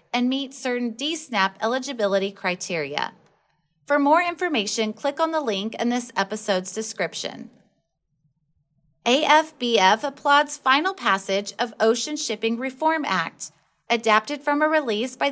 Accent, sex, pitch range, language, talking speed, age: American, female, 215-290 Hz, English, 120 wpm, 30-49